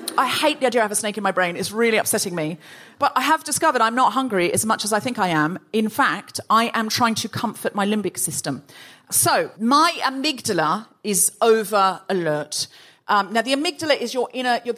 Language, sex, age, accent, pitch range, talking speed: English, female, 40-59, British, 195-250 Hz, 215 wpm